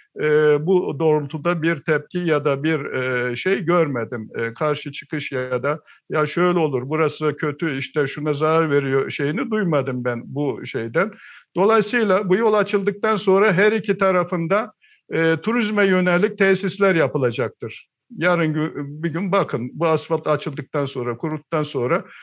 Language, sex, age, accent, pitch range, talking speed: Turkish, male, 60-79, native, 150-190 Hz, 145 wpm